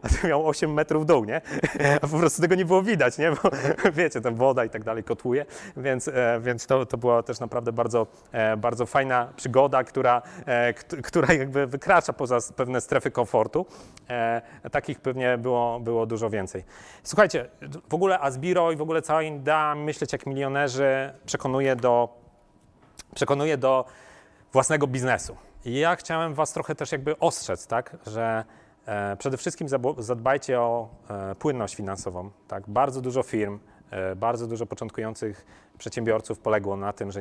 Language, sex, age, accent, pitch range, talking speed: Polish, male, 30-49, native, 110-135 Hz, 150 wpm